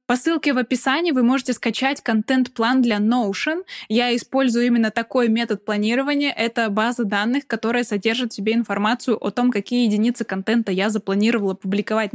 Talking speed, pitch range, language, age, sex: 160 wpm, 210-255 Hz, Russian, 10-29, female